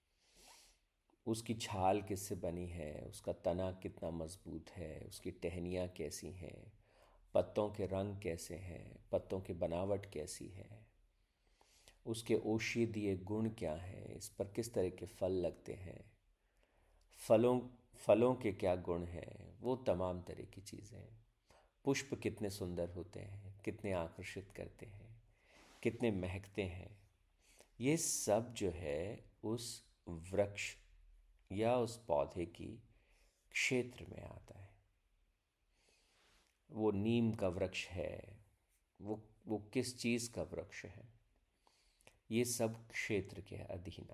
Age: 50-69